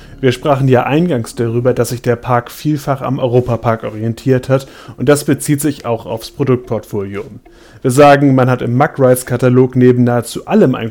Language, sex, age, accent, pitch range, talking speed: German, male, 30-49, German, 120-140 Hz, 175 wpm